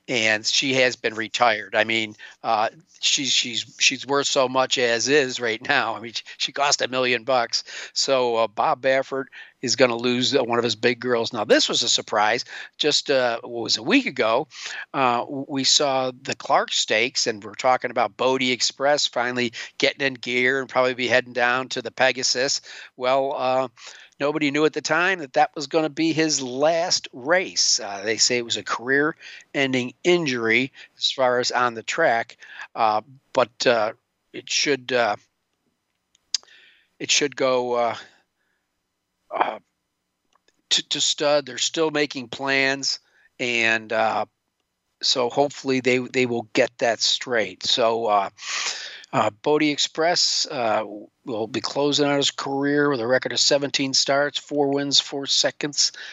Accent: American